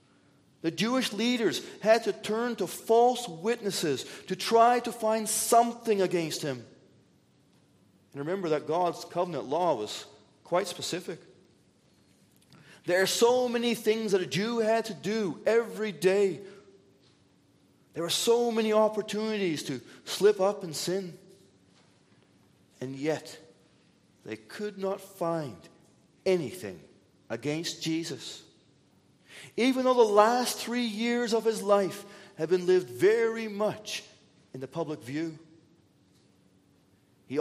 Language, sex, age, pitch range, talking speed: English, male, 40-59, 155-220 Hz, 120 wpm